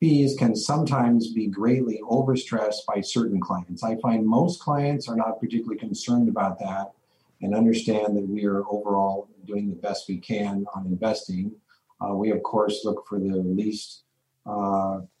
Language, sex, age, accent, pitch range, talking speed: English, male, 40-59, American, 100-115 Hz, 160 wpm